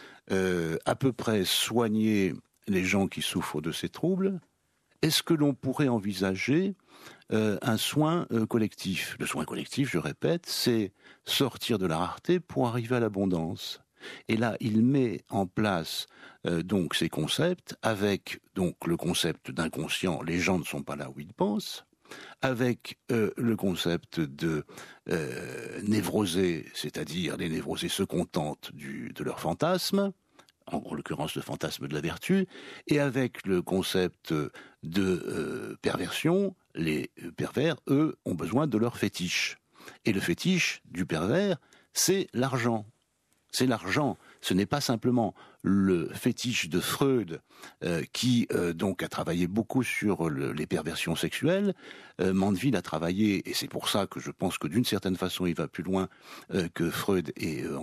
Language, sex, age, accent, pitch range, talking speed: French, male, 60-79, French, 95-140 Hz, 155 wpm